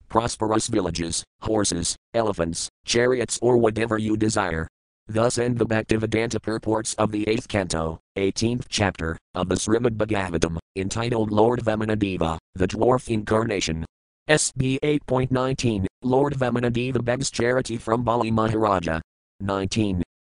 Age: 40-59